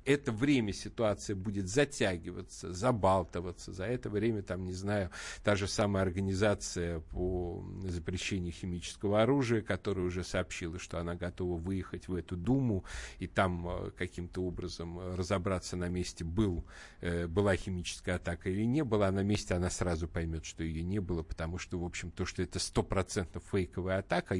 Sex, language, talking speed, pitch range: male, Russian, 155 wpm, 90-120 Hz